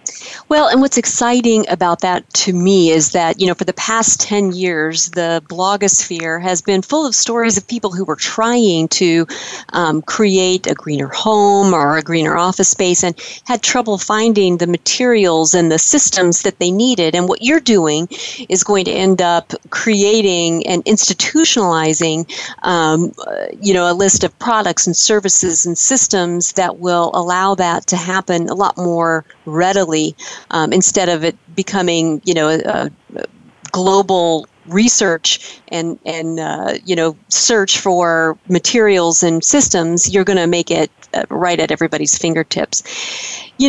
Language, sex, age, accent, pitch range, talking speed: English, female, 40-59, American, 170-210 Hz, 160 wpm